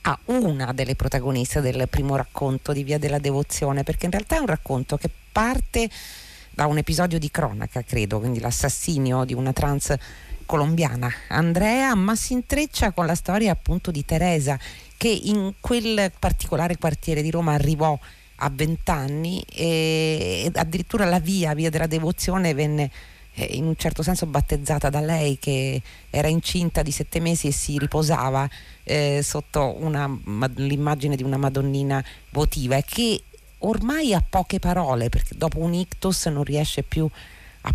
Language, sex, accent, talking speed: Italian, female, native, 155 wpm